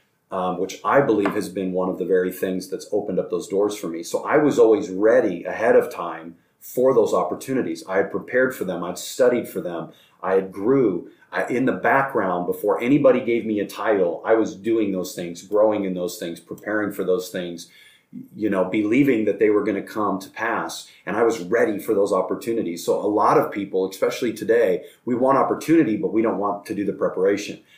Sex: male